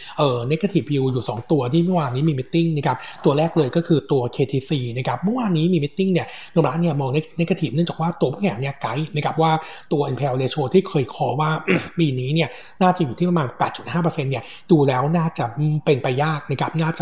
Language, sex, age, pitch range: Thai, male, 60-79, 135-170 Hz